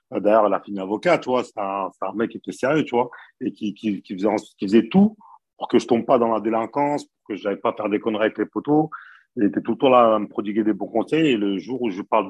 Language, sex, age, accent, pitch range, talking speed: French, male, 40-59, French, 100-130 Hz, 300 wpm